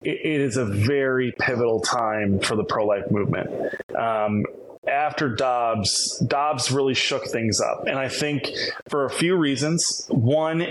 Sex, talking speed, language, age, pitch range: male, 145 wpm, English, 20-39, 120-140 Hz